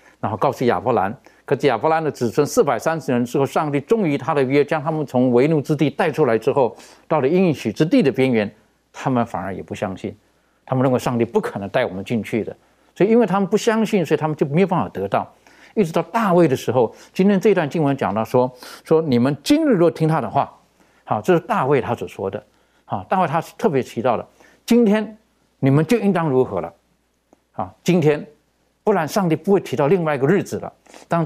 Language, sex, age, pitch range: Chinese, male, 60-79, 120-185 Hz